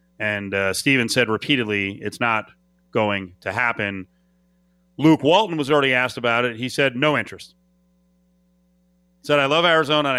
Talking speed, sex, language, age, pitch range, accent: 155 wpm, male, English, 30-49, 110-150 Hz, American